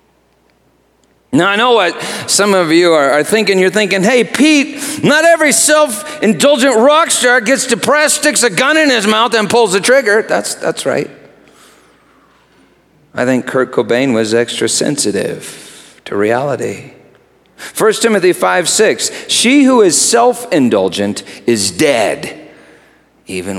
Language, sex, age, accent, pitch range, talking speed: English, male, 50-69, American, 170-255 Hz, 135 wpm